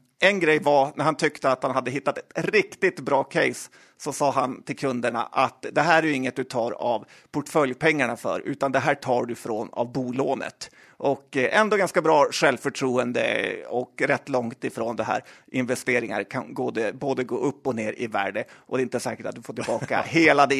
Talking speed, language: 200 wpm, Swedish